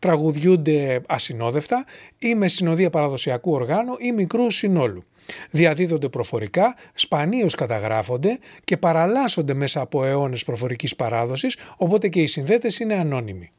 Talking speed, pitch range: 120 wpm, 100-165 Hz